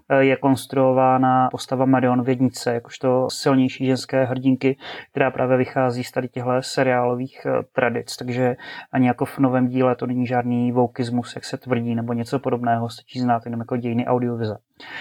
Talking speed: 155 wpm